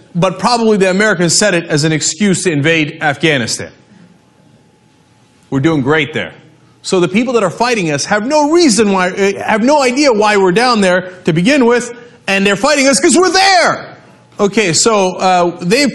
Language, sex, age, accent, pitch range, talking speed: English, male, 30-49, American, 150-210 Hz, 180 wpm